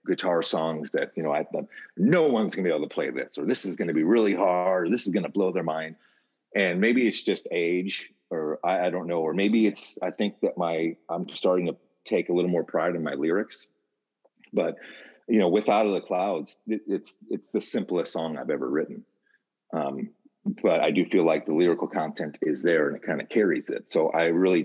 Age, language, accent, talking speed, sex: 40-59, English, American, 235 wpm, male